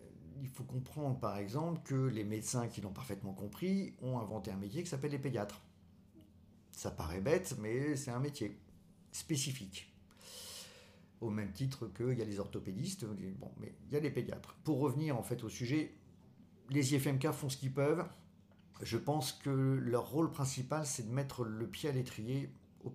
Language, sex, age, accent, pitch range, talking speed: French, male, 50-69, French, 105-140 Hz, 180 wpm